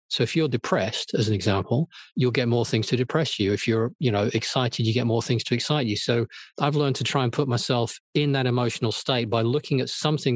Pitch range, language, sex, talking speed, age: 115-150 Hz, English, male, 245 wpm, 40-59